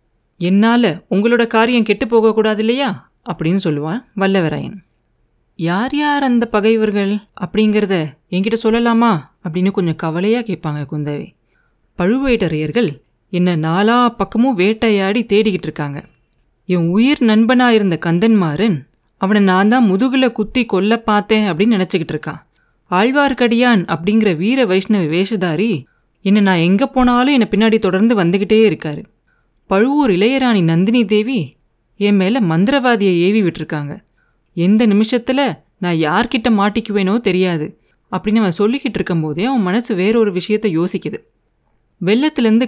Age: 30-49